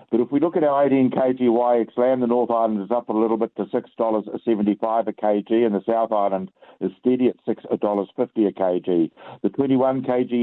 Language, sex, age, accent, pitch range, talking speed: English, male, 60-79, Australian, 100-120 Hz, 200 wpm